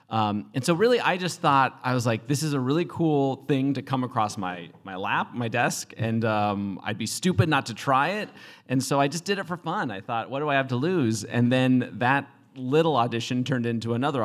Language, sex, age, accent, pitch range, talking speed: English, male, 30-49, American, 110-145 Hz, 240 wpm